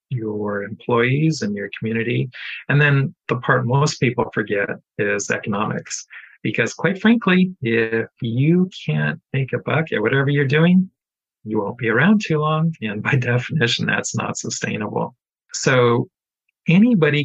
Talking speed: 145 wpm